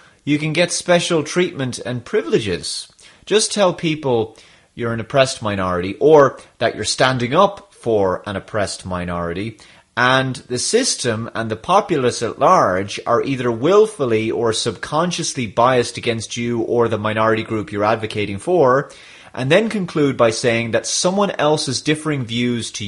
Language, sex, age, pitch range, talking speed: English, male, 30-49, 110-135 Hz, 150 wpm